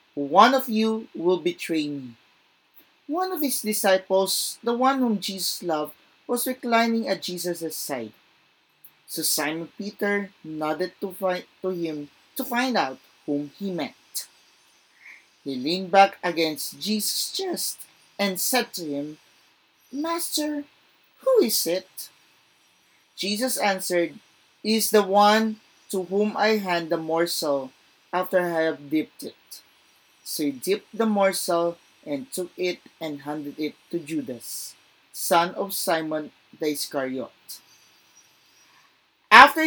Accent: Filipino